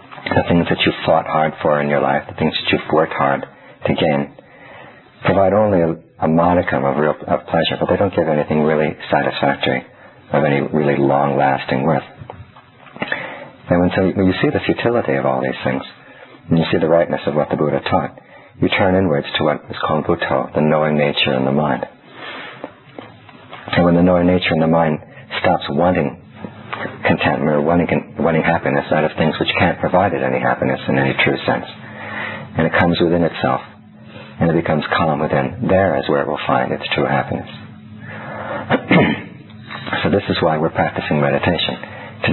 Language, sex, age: Thai, male, 50-69